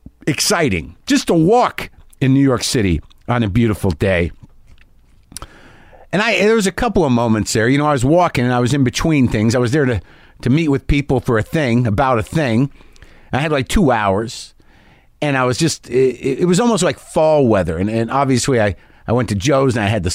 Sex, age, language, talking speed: male, 50-69, English, 225 wpm